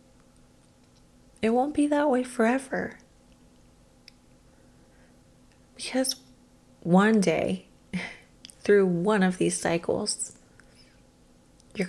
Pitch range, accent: 160-195 Hz, American